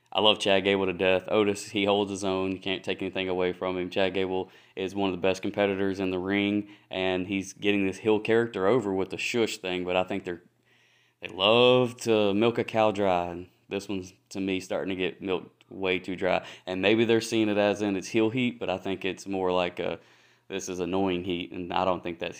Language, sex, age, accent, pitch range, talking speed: English, male, 20-39, American, 95-110 Hz, 240 wpm